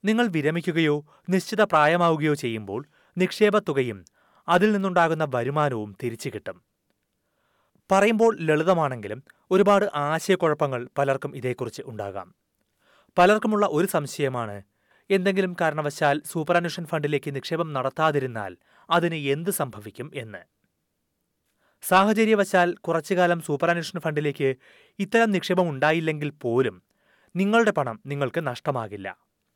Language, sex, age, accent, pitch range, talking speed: Malayalam, male, 30-49, native, 140-180 Hz, 90 wpm